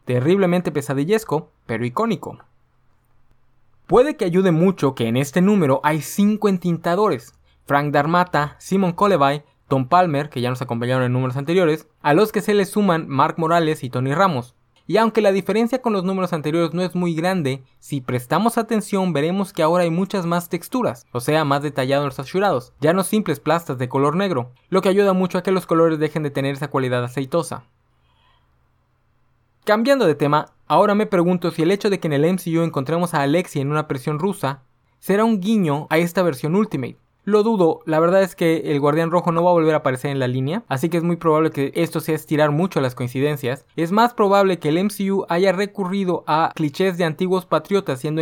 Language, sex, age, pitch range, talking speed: Spanish, male, 20-39, 135-185 Hz, 200 wpm